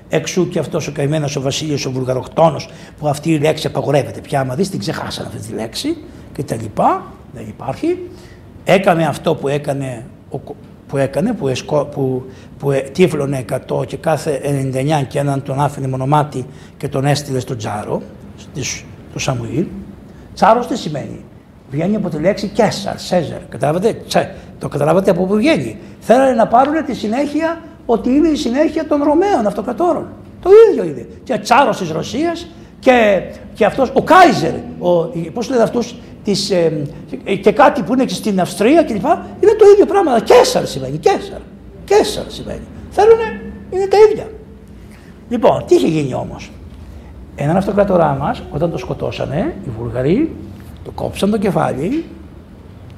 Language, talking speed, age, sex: Greek, 155 wpm, 60-79, male